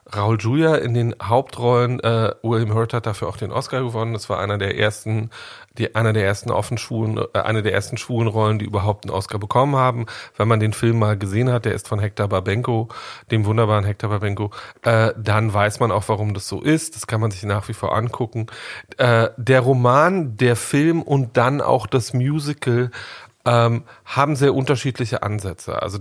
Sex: male